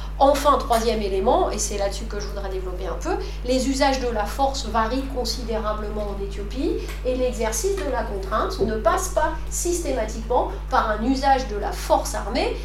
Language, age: French, 40-59